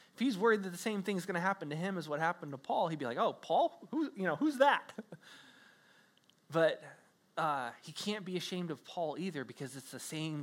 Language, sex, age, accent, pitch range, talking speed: English, male, 20-39, American, 135-195 Hz, 230 wpm